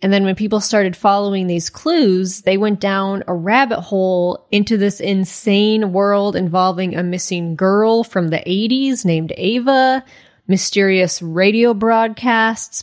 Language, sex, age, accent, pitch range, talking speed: English, female, 20-39, American, 185-220 Hz, 140 wpm